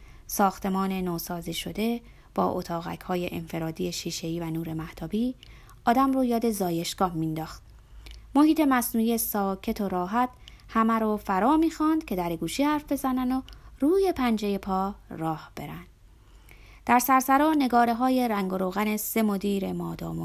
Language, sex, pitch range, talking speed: Persian, female, 160-245 Hz, 135 wpm